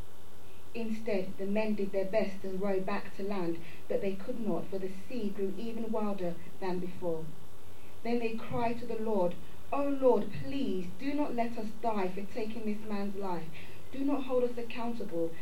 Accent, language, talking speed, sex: British, English, 185 wpm, female